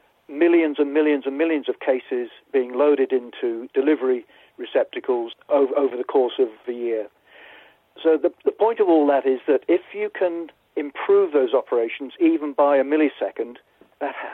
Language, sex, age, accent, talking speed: English, male, 50-69, British, 165 wpm